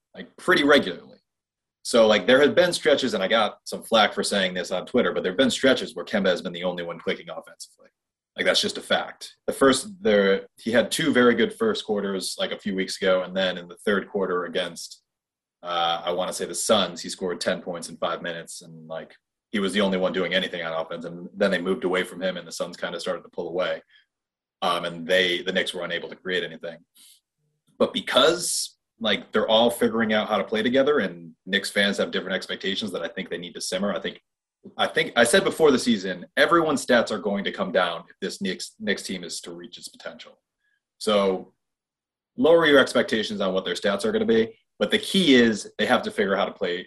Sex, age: male, 30-49